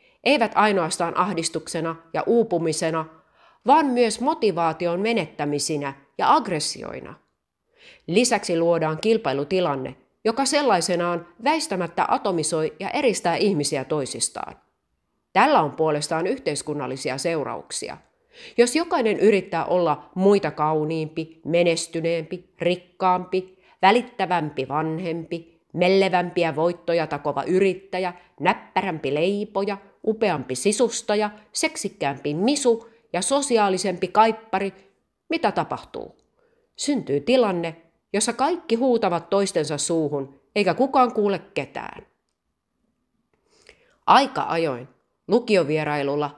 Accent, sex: native, female